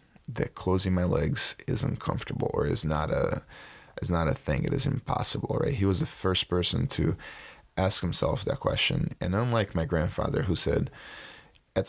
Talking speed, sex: 175 wpm, male